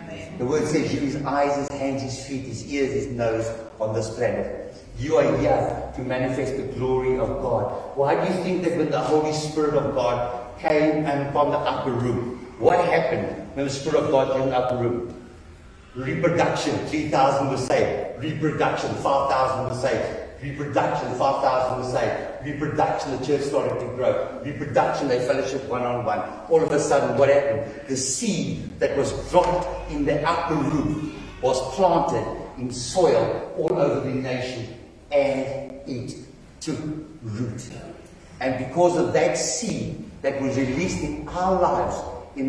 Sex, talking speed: male, 165 wpm